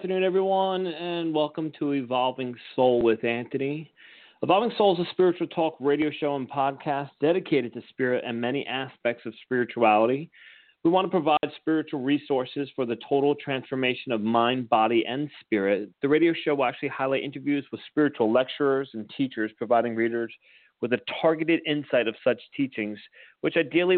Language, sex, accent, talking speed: English, male, American, 165 wpm